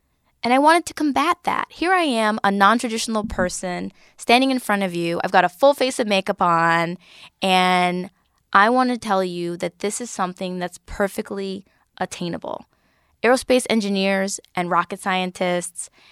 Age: 10-29